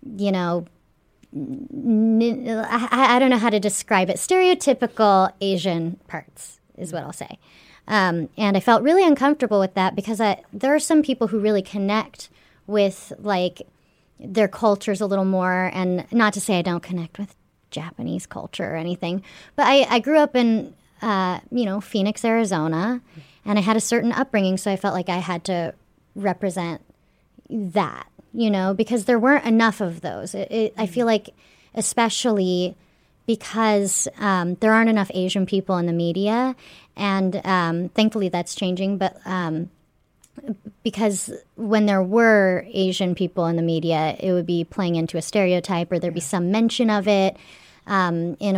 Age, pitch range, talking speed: 30-49, 180-225 Hz, 165 wpm